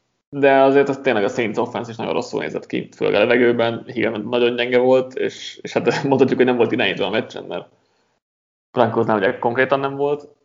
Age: 20-39